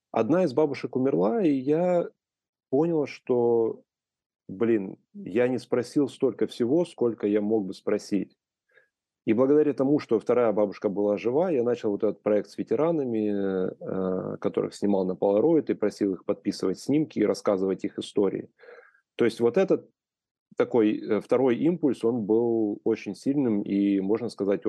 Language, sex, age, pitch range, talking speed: Russian, male, 20-39, 100-120 Hz, 150 wpm